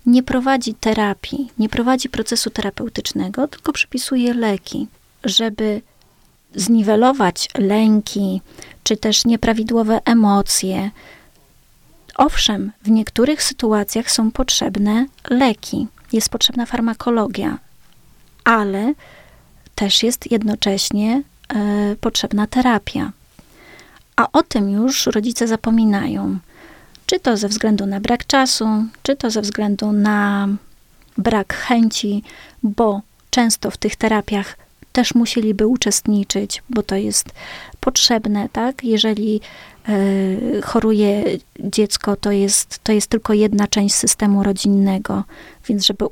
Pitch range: 205-235 Hz